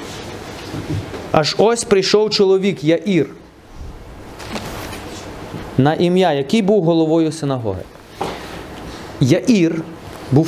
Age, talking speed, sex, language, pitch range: 30-49, 75 wpm, male, Ukrainian, 125-170 Hz